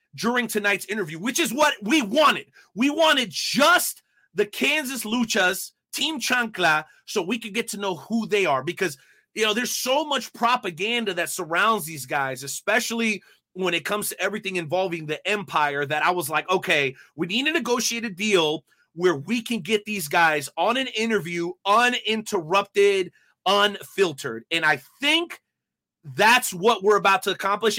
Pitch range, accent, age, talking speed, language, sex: 175-245 Hz, American, 30-49, 165 wpm, English, male